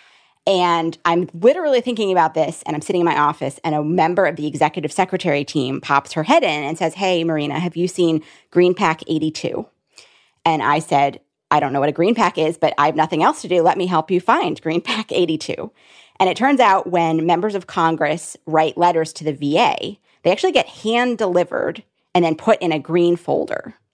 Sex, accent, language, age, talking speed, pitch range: female, American, English, 30-49, 210 wpm, 155-190 Hz